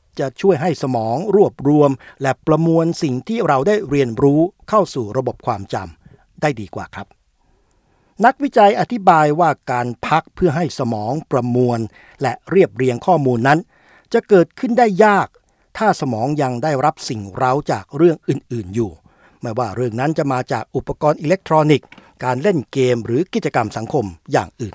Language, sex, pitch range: Thai, male, 120-160 Hz